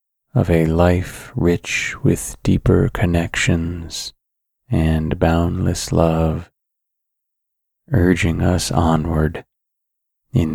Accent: American